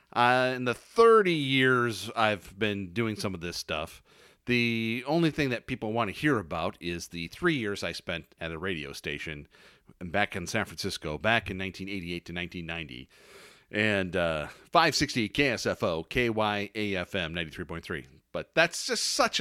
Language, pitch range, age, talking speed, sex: English, 95-130 Hz, 40-59, 155 wpm, male